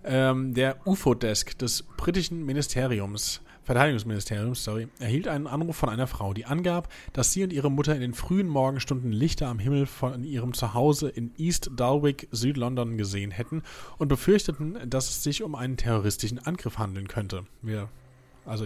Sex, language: male, German